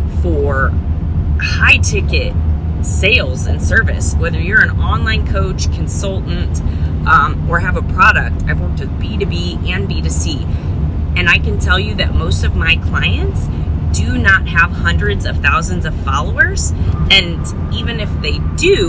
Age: 30-49